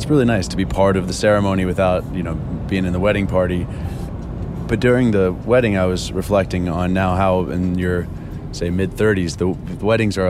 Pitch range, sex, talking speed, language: 90-105 Hz, male, 205 wpm, English